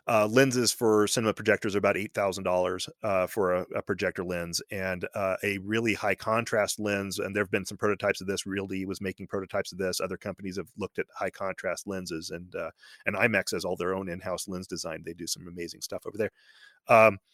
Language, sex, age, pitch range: English, male, 30-49, 95-115 Hz